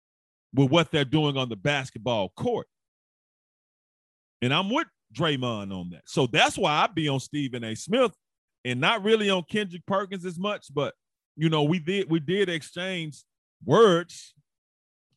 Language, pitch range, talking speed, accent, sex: English, 145-205 Hz, 160 wpm, American, male